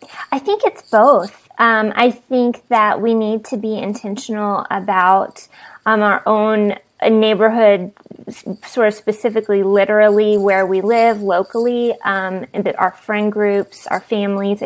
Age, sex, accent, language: 20-39, female, American, English